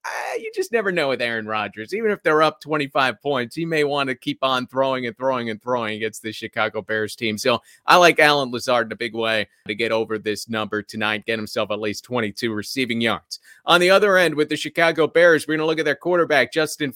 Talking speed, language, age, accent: 235 wpm, English, 30-49, American